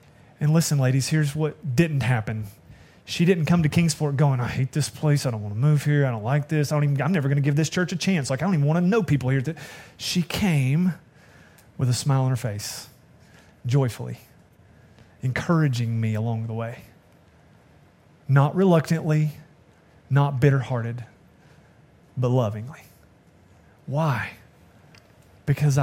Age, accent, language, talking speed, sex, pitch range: 30-49, American, English, 160 wpm, male, 125-160 Hz